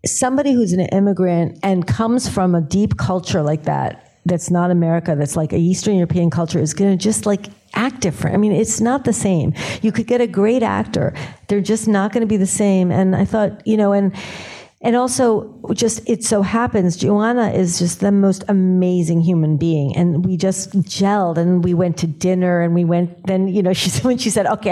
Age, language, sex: 50-69, English, female